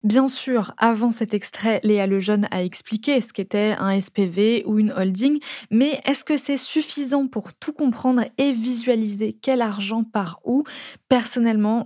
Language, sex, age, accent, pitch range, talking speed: French, female, 20-39, French, 200-250 Hz, 155 wpm